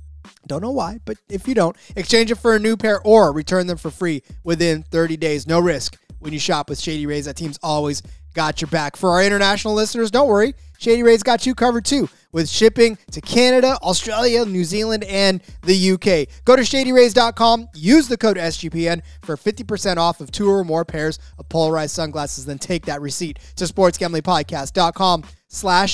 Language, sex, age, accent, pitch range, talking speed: English, male, 20-39, American, 160-210 Hz, 190 wpm